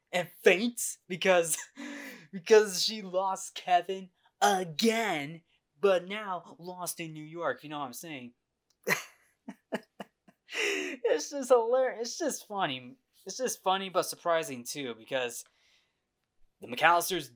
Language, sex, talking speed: English, male, 120 wpm